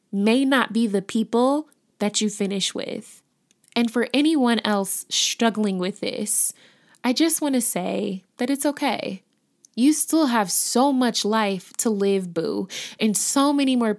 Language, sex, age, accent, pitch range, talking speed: English, female, 20-39, American, 205-250 Hz, 160 wpm